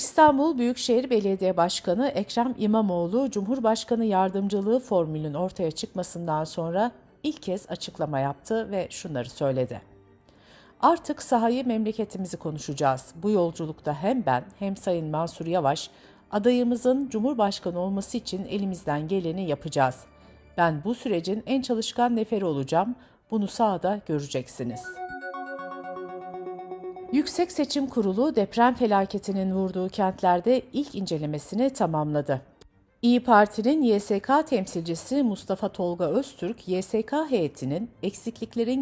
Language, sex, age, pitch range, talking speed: Turkish, female, 60-79, 165-235 Hz, 105 wpm